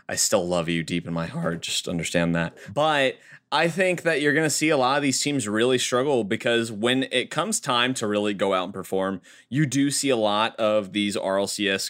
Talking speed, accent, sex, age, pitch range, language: 225 wpm, American, male, 30-49, 105-150 Hz, English